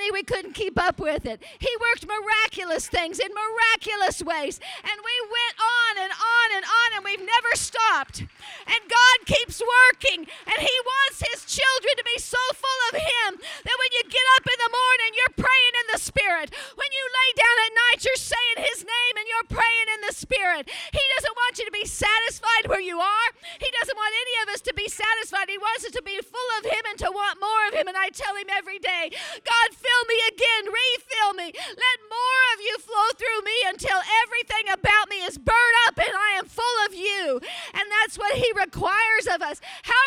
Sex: female